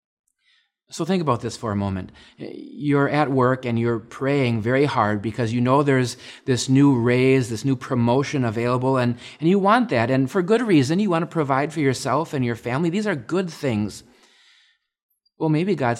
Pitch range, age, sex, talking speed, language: 115-165 Hz, 30-49, male, 190 wpm, English